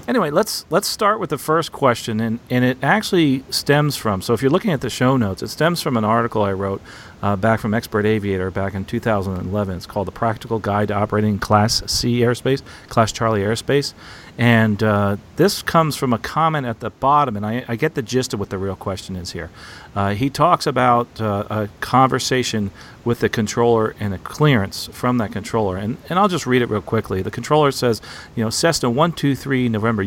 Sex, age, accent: male, 40-59, American